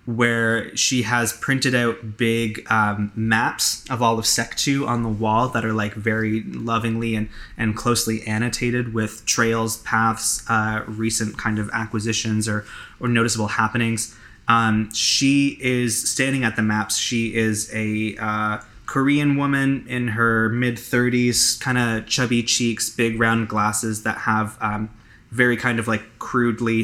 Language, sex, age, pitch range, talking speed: English, male, 20-39, 110-120 Hz, 155 wpm